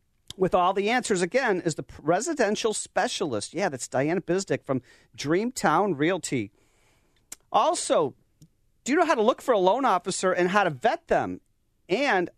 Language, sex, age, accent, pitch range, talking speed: English, male, 40-59, American, 155-210 Hz, 160 wpm